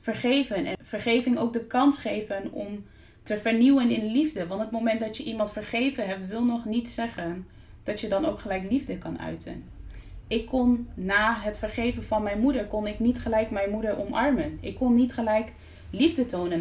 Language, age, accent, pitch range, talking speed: Dutch, 20-39, Dutch, 170-225 Hz, 190 wpm